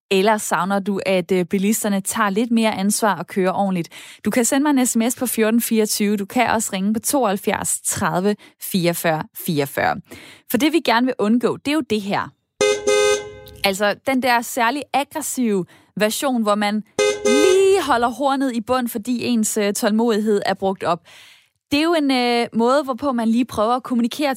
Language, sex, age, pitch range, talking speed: Danish, female, 20-39, 200-260 Hz, 175 wpm